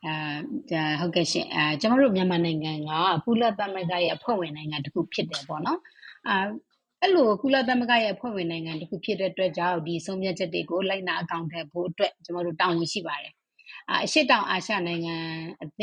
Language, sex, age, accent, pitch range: English, female, 30-49, Indian, 170-205 Hz